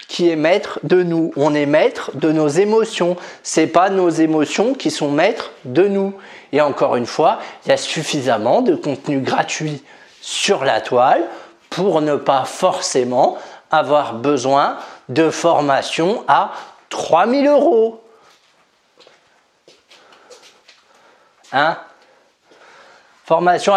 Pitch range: 165-250 Hz